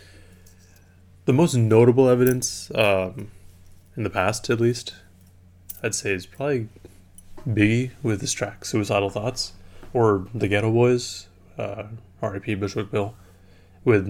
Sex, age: male, 20-39